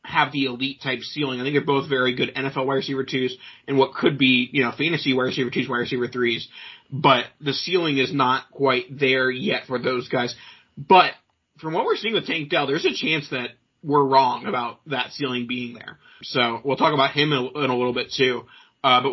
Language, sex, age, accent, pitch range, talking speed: English, male, 30-49, American, 130-145 Hz, 220 wpm